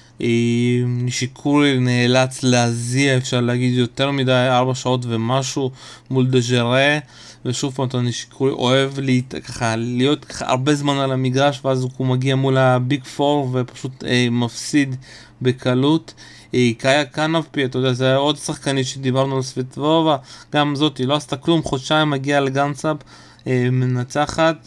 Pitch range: 125-145 Hz